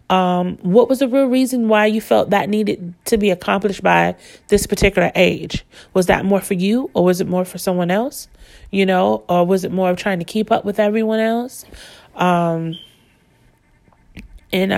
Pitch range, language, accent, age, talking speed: 170-200 Hz, English, American, 30-49, 185 wpm